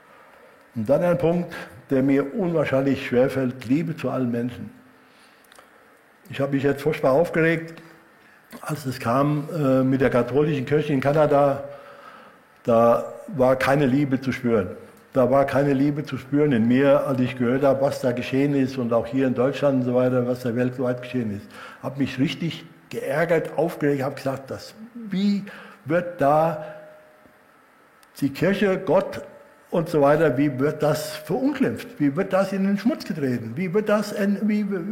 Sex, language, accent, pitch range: male, German, German, 130-170 Hz